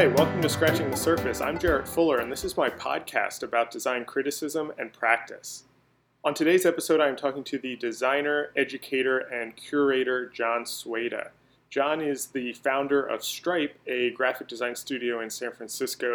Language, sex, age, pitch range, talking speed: English, male, 30-49, 120-140 Hz, 170 wpm